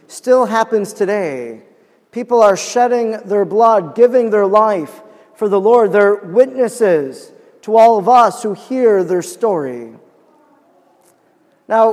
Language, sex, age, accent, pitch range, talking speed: English, male, 40-59, American, 200-240 Hz, 125 wpm